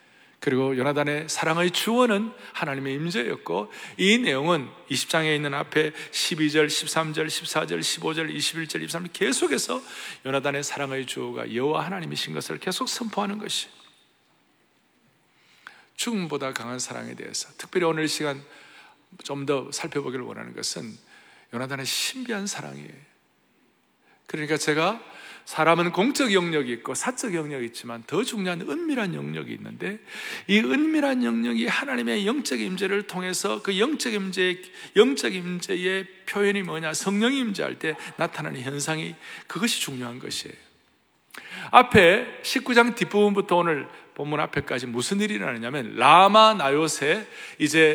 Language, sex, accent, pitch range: Korean, male, native, 145-205 Hz